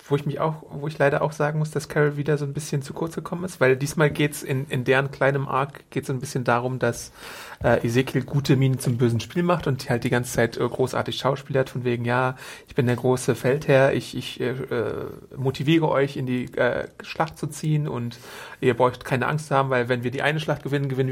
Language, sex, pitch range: German, male, 130-155 Hz